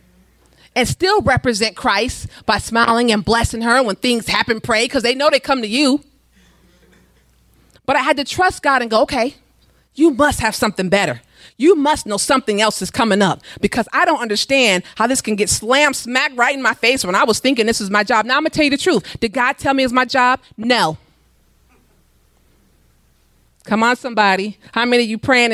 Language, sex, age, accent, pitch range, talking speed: English, female, 30-49, American, 200-270 Hz, 205 wpm